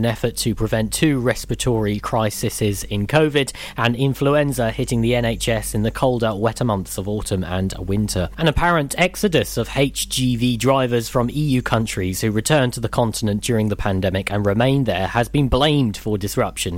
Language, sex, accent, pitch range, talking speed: English, male, British, 110-135 Hz, 170 wpm